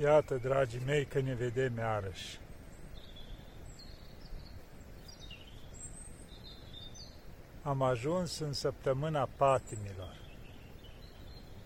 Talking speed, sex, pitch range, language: 60 wpm, male, 95-135 Hz, Romanian